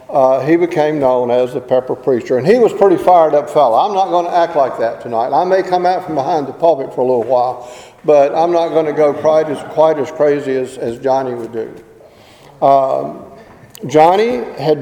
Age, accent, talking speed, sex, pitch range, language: 50-69, American, 215 wpm, male, 135-170 Hz, English